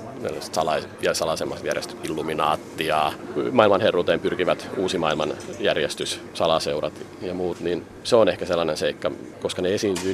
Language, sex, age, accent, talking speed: Finnish, male, 40-59, native, 110 wpm